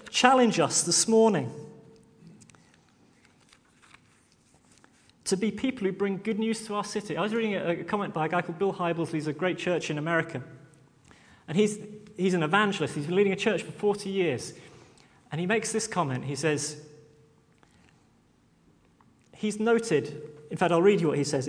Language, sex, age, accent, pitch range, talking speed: English, male, 30-49, British, 155-210 Hz, 170 wpm